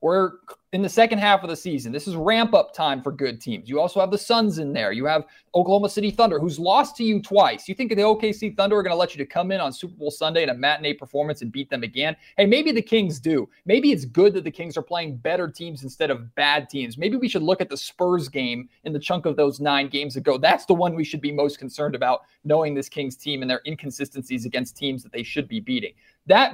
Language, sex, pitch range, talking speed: English, male, 145-205 Hz, 260 wpm